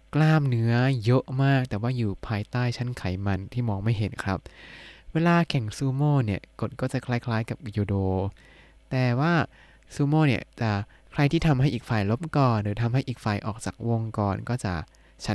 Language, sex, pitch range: Thai, male, 105-140 Hz